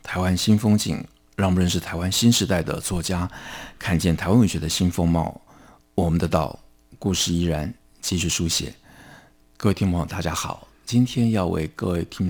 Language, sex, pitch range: Chinese, male, 80-90 Hz